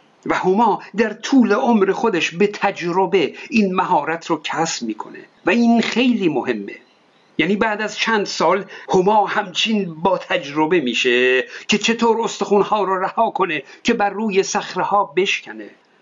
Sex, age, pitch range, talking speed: male, 60-79, 170-210 Hz, 140 wpm